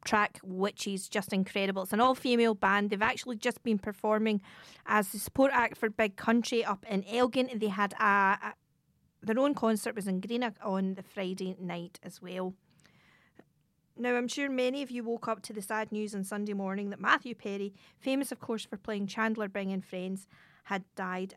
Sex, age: female, 40-59